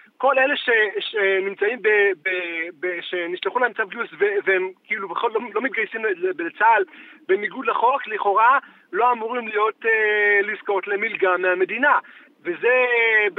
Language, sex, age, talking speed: Hebrew, male, 30-49, 135 wpm